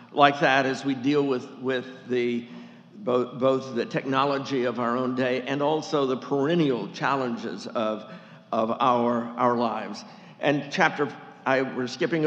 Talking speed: 150 wpm